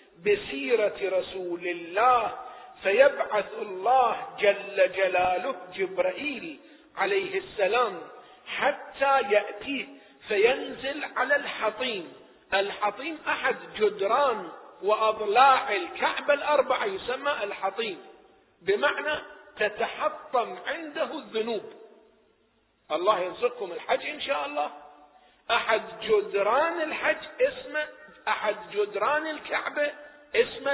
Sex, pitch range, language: male, 215-315 Hz, Arabic